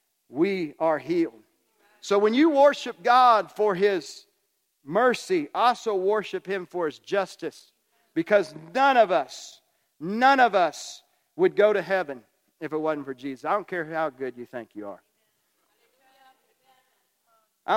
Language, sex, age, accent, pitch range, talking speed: English, male, 50-69, American, 170-260 Hz, 145 wpm